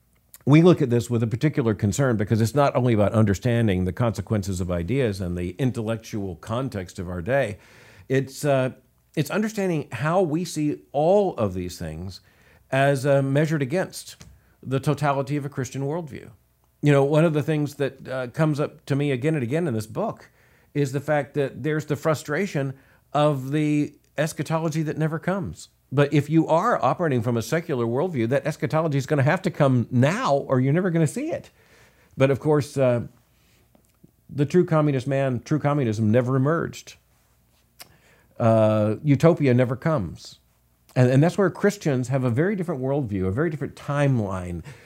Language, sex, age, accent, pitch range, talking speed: English, male, 50-69, American, 115-150 Hz, 175 wpm